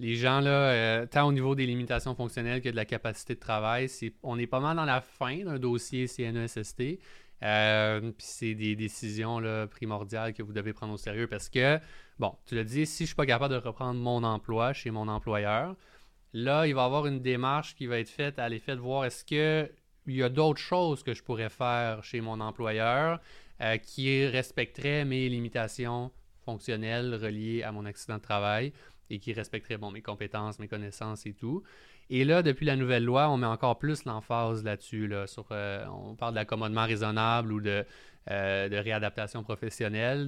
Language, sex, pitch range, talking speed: French, male, 110-130 Hz, 185 wpm